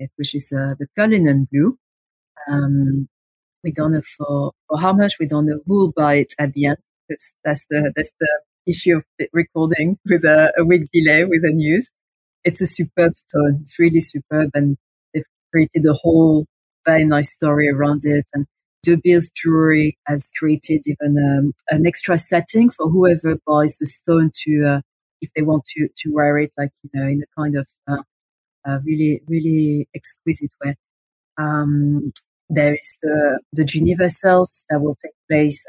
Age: 40-59